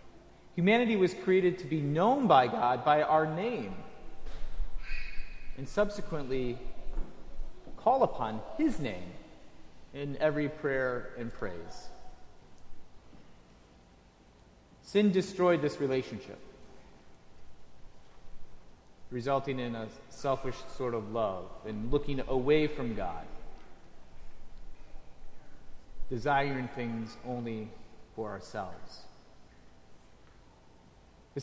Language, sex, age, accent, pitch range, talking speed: English, male, 30-49, American, 125-175 Hz, 85 wpm